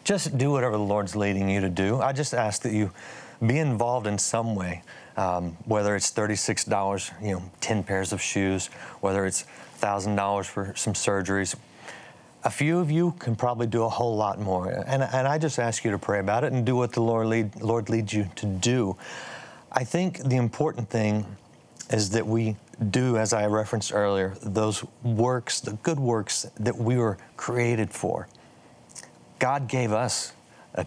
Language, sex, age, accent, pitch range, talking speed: English, male, 40-59, American, 100-120 Hz, 180 wpm